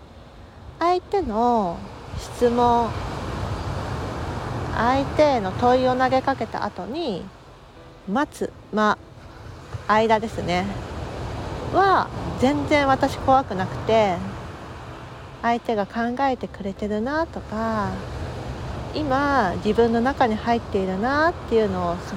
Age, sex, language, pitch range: 40-59, female, Japanese, 200-265 Hz